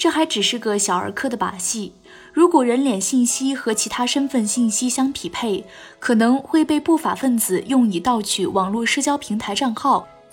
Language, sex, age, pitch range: Chinese, female, 20-39, 205-270 Hz